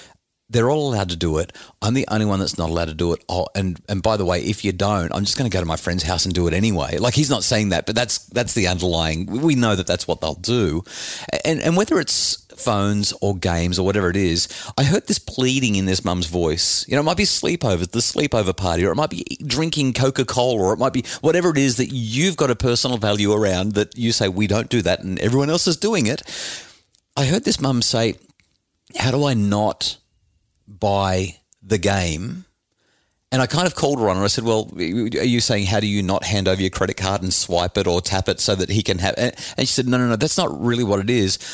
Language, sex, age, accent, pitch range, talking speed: English, male, 40-59, Australian, 95-125 Hz, 250 wpm